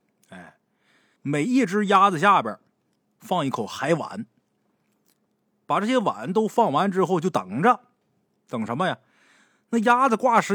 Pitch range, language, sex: 150-230 Hz, Chinese, male